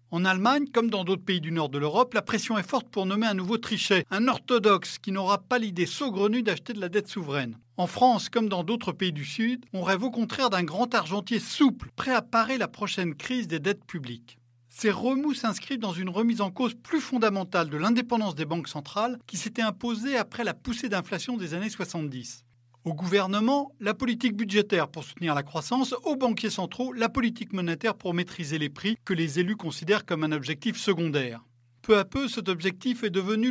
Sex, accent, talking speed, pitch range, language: male, French, 205 wpm, 170-235 Hz, French